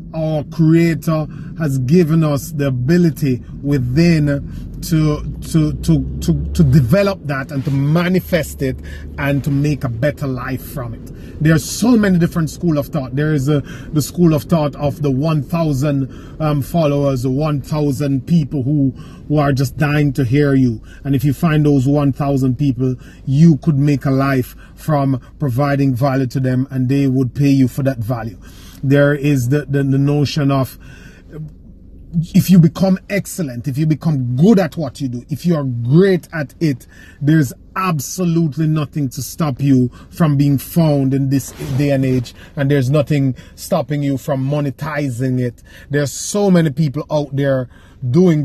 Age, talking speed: 30-49, 170 wpm